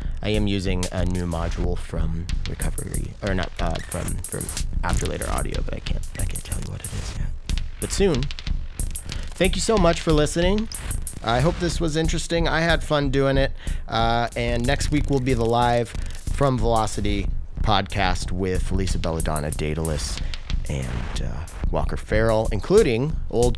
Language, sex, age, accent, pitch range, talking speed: English, male, 30-49, American, 80-125 Hz, 170 wpm